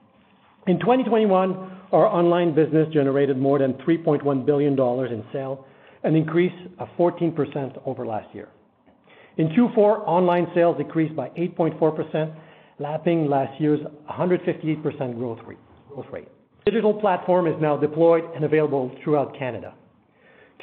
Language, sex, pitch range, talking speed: English, male, 135-170 Hz, 120 wpm